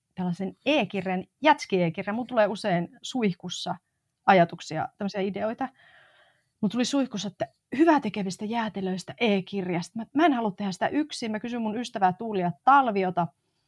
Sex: female